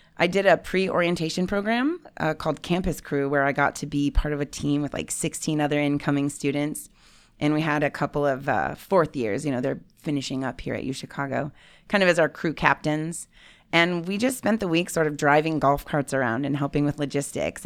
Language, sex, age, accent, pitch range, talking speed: English, female, 30-49, American, 145-180 Hz, 215 wpm